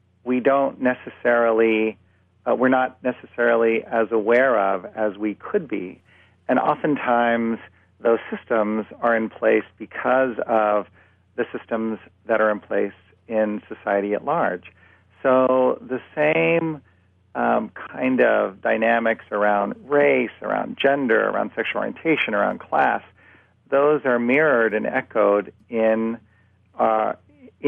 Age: 50-69